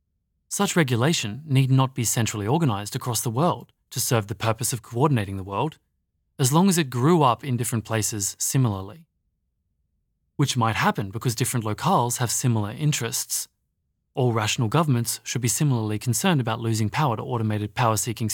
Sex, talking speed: male, 165 wpm